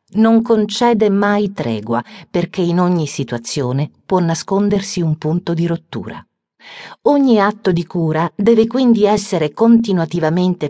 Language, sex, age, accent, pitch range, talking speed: Italian, female, 40-59, native, 150-215 Hz, 125 wpm